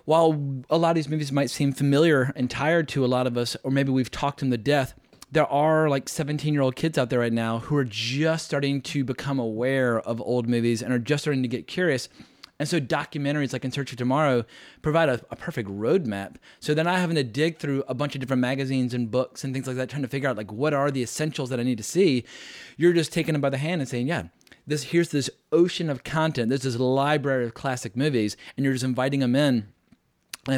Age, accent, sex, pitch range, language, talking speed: 30-49, American, male, 125-155 Hz, English, 245 wpm